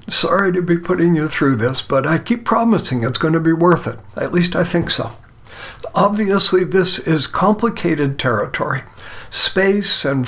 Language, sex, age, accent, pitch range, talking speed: English, male, 60-79, American, 140-180 Hz, 170 wpm